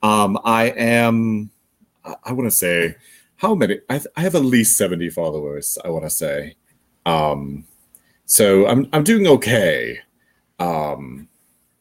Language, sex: English, male